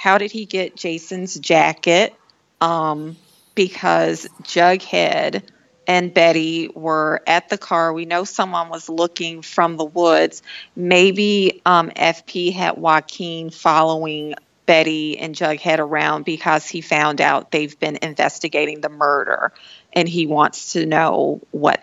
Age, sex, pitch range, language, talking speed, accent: 40-59, female, 155-185 Hz, English, 130 wpm, American